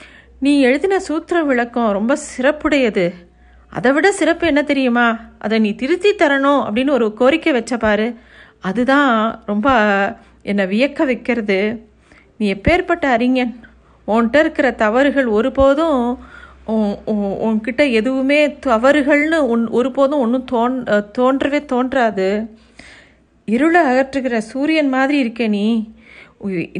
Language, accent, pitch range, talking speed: Tamil, native, 215-275 Hz, 100 wpm